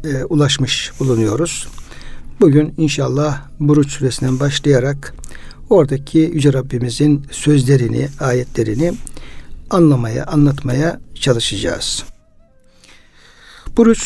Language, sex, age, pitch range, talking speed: Turkish, male, 60-79, 130-155 Hz, 70 wpm